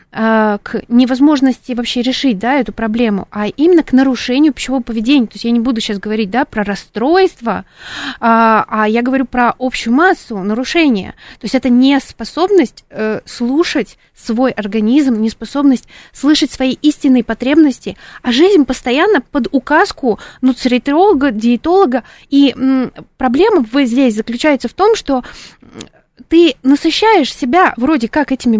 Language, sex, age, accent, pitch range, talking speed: Russian, female, 20-39, native, 230-290 Hz, 130 wpm